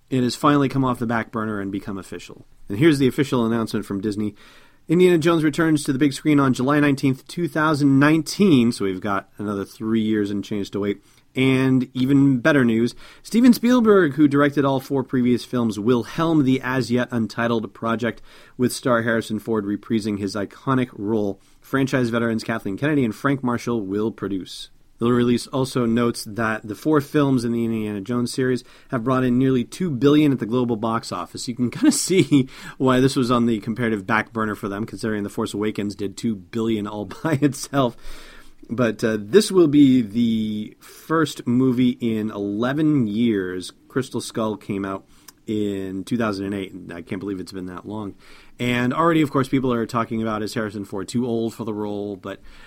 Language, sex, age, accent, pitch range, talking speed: English, male, 30-49, American, 105-135 Hz, 185 wpm